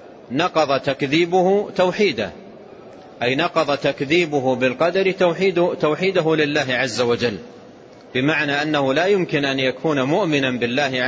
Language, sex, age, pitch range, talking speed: Arabic, male, 40-59, 135-170 Hz, 105 wpm